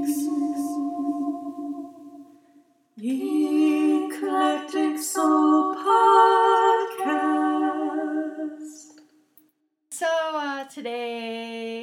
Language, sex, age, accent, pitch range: English, female, 40-59, American, 170-235 Hz